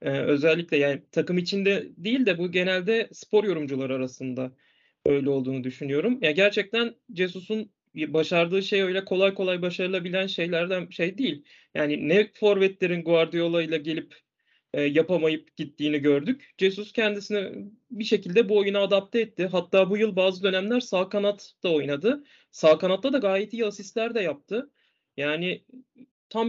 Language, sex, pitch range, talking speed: Turkish, male, 160-230 Hz, 145 wpm